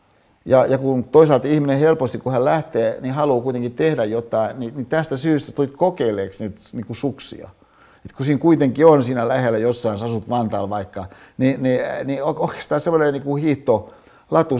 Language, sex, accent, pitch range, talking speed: Finnish, male, native, 110-145 Hz, 175 wpm